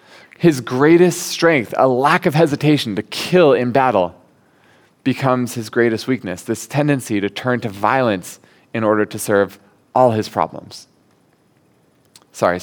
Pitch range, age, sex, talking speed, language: 110-145 Hz, 20-39, male, 140 wpm, English